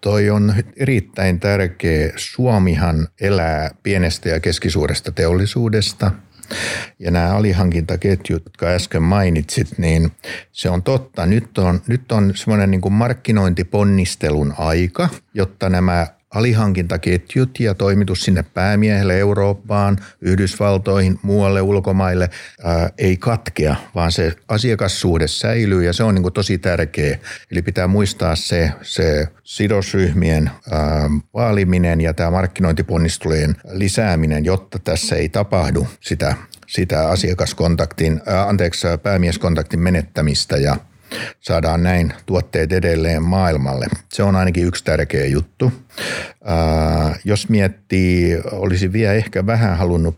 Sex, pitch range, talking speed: male, 80-100 Hz, 115 wpm